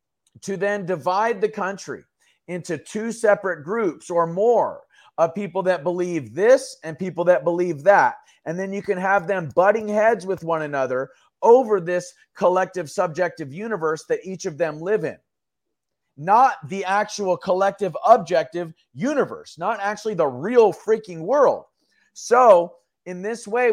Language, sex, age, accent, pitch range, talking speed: English, male, 40-59, American, 160-195 Hz, 150 wpm